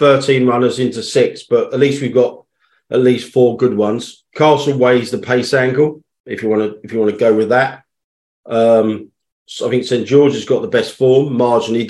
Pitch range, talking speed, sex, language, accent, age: 105-130 Hz, 205 wpm, male, English, British, 40-59